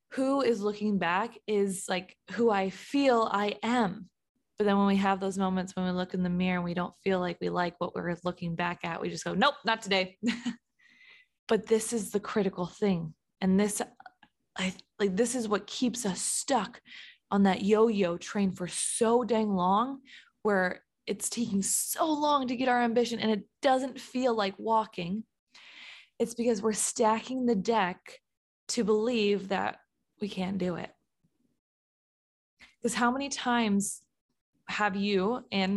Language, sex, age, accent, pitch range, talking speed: English, female, 20-39, American, 185-235 Hz, 170 wpm